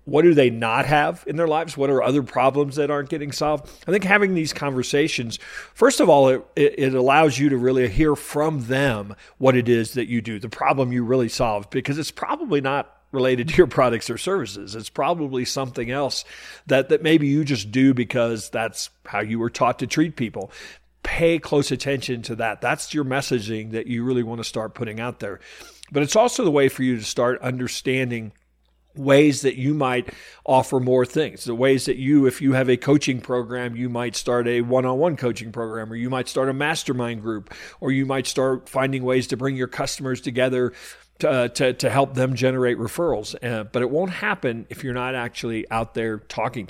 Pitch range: 120-145 Hz